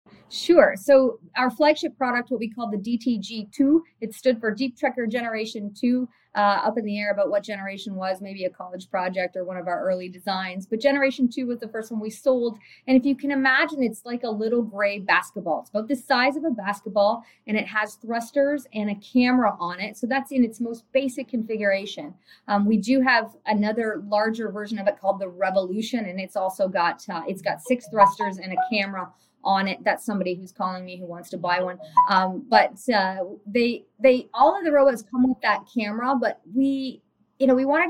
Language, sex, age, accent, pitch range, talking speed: English, female, 30-49, American, 195-250 Hz, 210 wpm